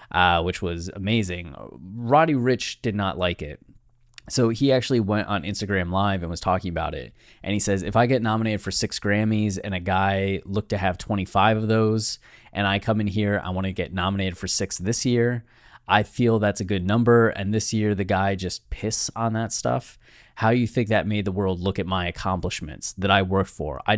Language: English